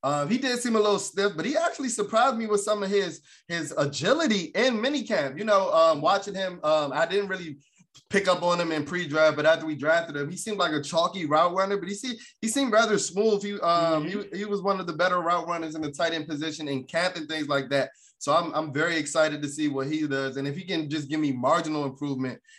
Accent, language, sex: American, English, male